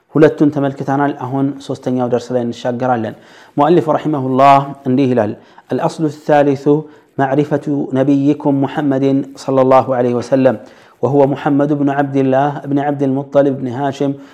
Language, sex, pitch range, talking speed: Amharic, male, 130-145 Hz, 130 wpm